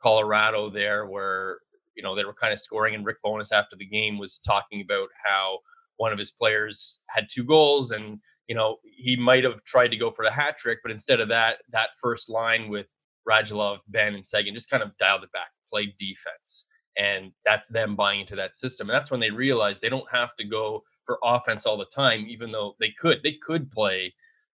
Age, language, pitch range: 20-39, English, 105-150 Hz